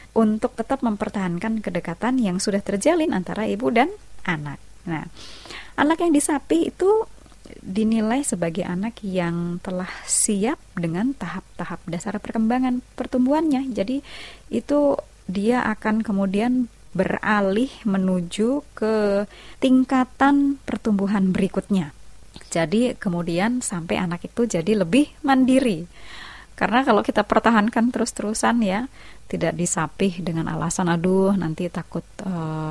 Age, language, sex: 20-39, Indonesian, female